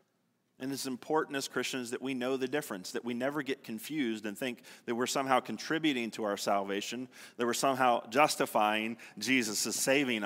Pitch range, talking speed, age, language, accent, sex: 125-180 Hz, 180 wpm, 30-49, English, American, male